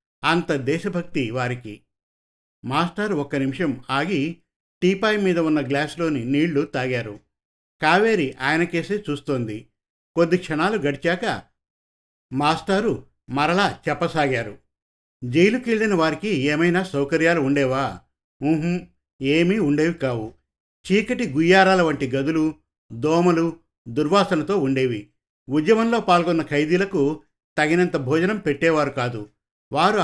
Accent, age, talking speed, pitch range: native, 50-69, 90 wpm, 135-175 Hz